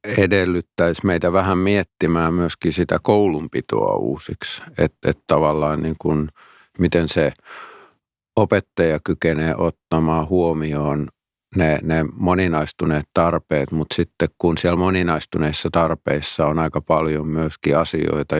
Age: 50-69